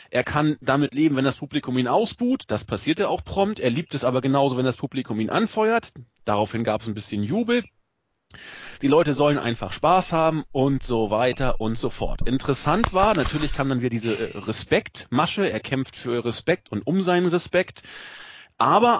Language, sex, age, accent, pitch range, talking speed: German, male, 40-59, German, 125-175 Hz, 185 wpm